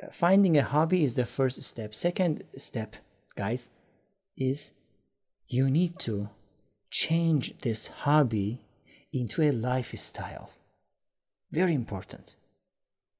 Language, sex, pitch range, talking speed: English, male, 125-160 Hz, 100 wpm